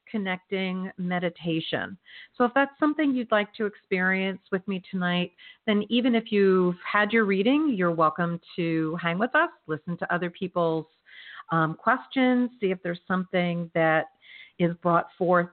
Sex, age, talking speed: female, 50-69, 155 wpm